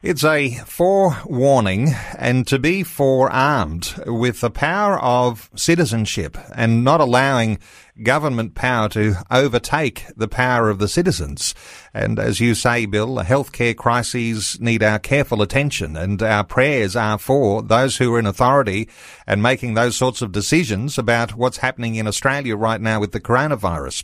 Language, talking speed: English, 150 wpm